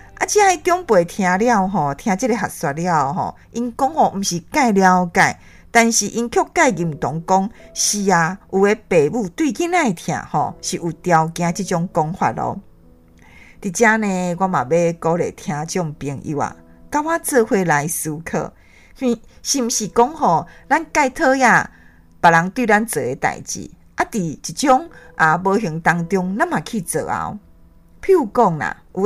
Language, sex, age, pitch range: Chinese, female, 50-69, 170-250 Hz